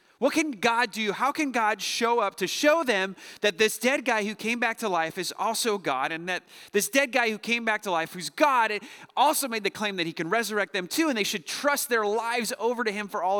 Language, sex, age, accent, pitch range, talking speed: English, male, 30-49, American, 175-245 Hz, 255 wpm